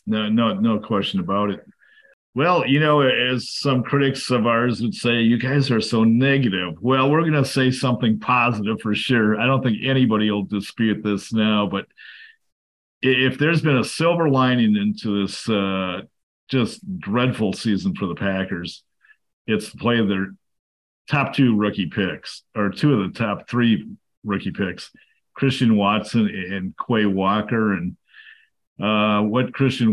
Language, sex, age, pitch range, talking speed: English, male, 50-69, 100-130 Hz, 160 wpm